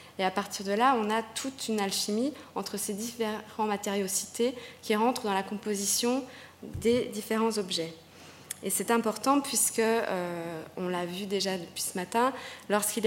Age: 20-39